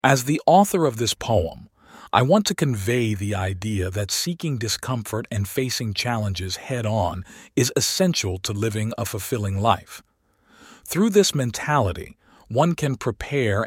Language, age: English, 40-59